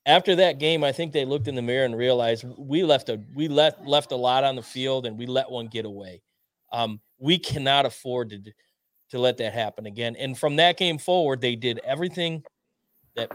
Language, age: English, 30-49